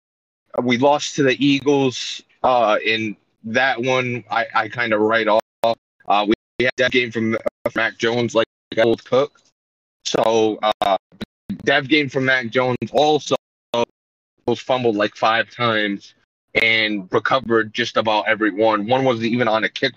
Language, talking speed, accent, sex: English, 165 wpm, American, male